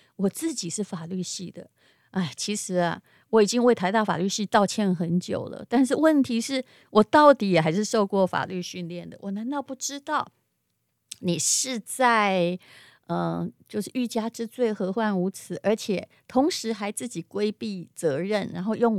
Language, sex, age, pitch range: Chinese, female, 30-49, 180-240 Hz